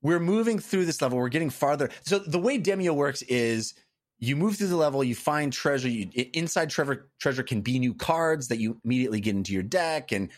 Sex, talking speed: male, 210 wpm